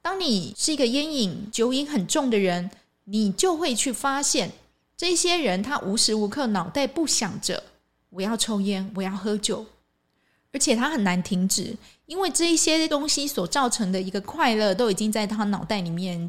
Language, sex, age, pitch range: Chinese, female, 20-39, 195-265 Hz